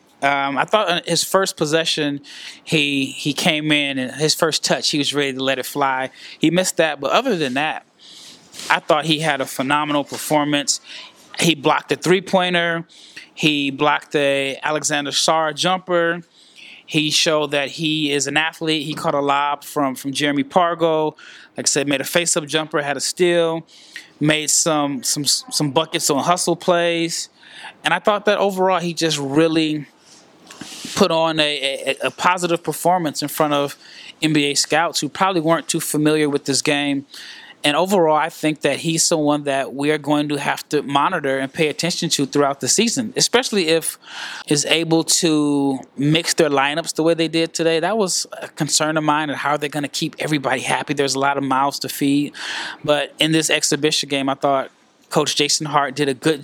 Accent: American